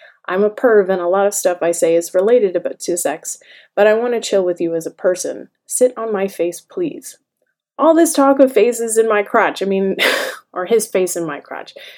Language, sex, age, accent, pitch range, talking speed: English, female, 20-39, American, 185-235 Hz, 225 wpm